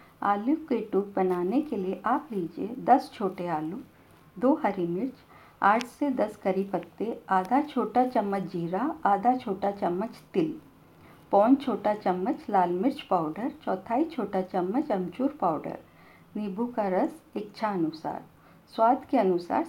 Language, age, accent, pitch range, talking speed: Hindi, 50-69, native, 185-250 Hz, 140 wpm